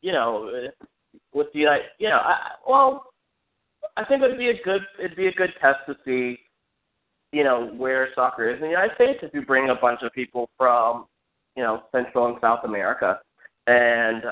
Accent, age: American, 20-39